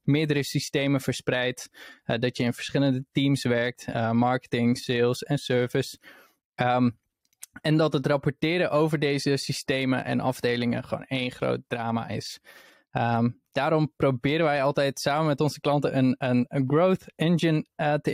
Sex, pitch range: male, 125-150 Hz